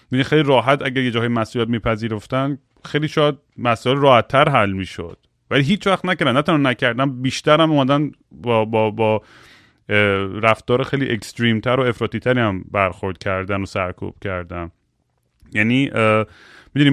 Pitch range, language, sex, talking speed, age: 110-140 Hz, Persian, male, 140 wpm, 30-49